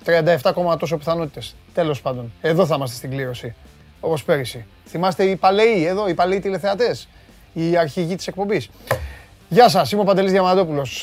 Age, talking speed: 30-49, 160 wpm